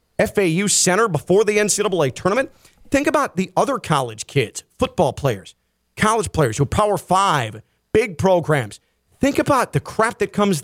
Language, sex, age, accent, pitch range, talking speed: English, male, 40-59, American, 155-210 Hz, 160 wpm